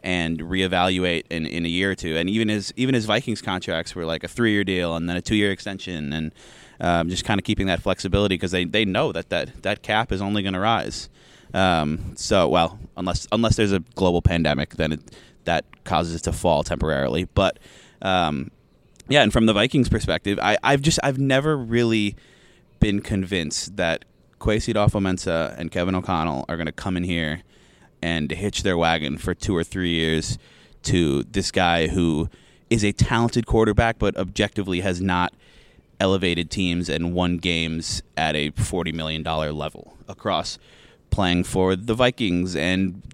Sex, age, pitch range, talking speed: male, 20-39, 85-105 Hz, 180 wpm